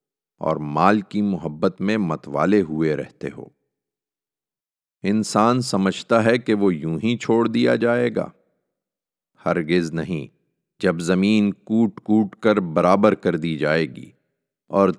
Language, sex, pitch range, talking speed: Urdu, male, 80-100 Hz, 130 wpm